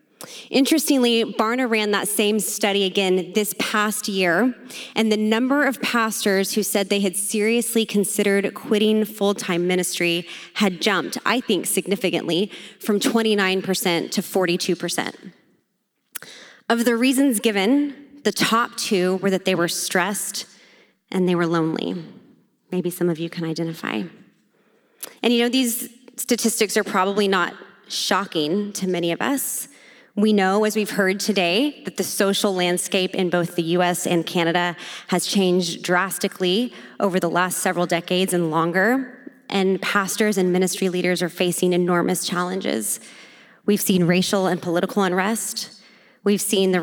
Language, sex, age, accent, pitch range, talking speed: English, female, 20-39, American, 180-220 Hz, 145 wpm